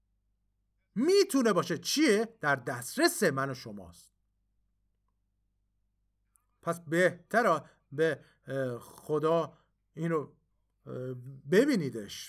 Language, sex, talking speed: Persian, male, 70 wpm